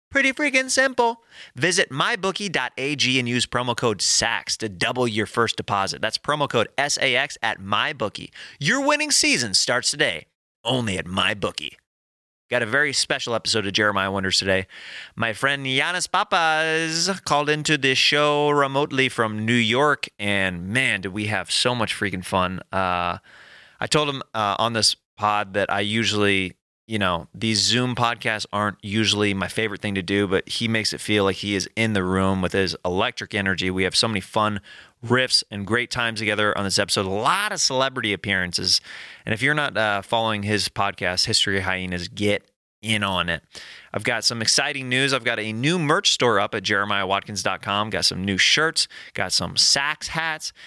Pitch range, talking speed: 100-125 Hz, 180 wpm